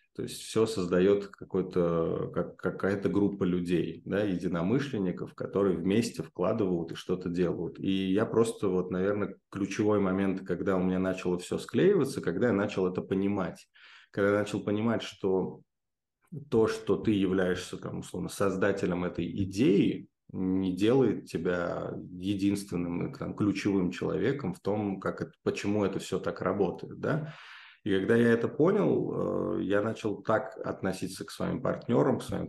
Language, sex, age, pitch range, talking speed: Russian, male, 20-39, 90-105 Hz, 150 wpm